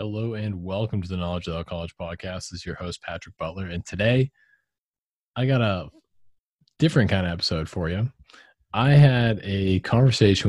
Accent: American